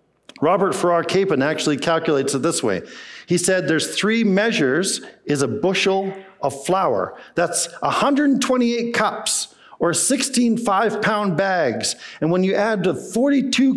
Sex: male